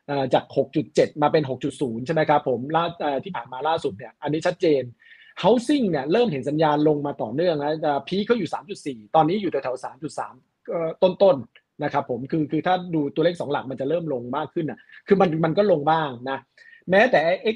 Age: 30-49